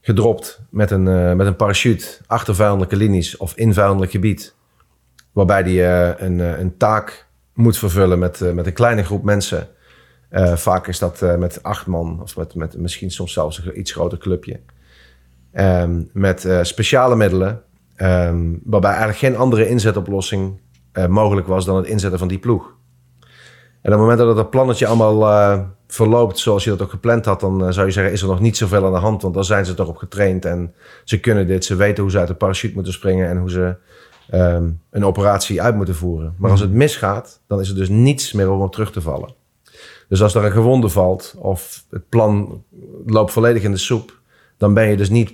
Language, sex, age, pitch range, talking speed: Dutch, male, 40-59, 90-110 Hz, 210 wpm